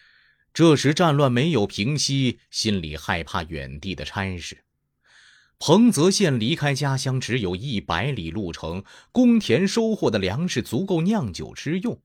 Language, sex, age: Chinese, male, 30-49